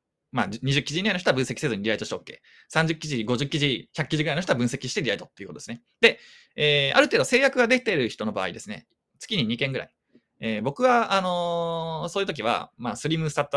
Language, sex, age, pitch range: Japanese, male, 20-39, 120-175 Hz